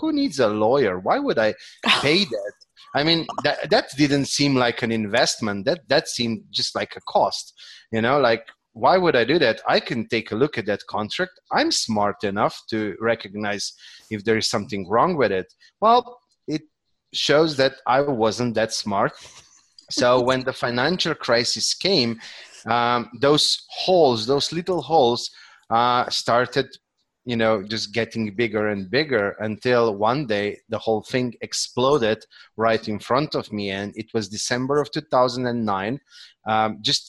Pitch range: 110-135 Hz